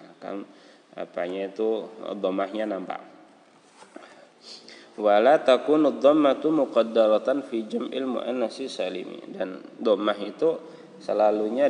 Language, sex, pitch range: Indonesian, male, 100-125 Hz